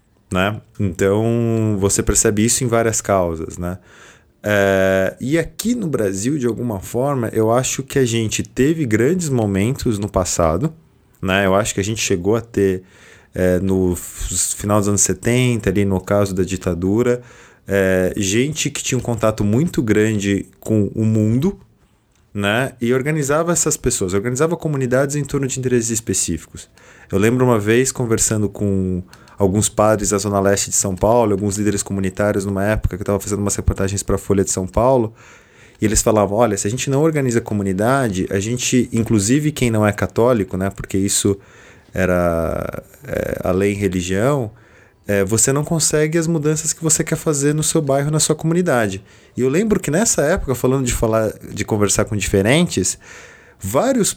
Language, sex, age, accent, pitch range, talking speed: Portuguese, male, 20-39, Brazilian, 100-125 Hz, 170 wpm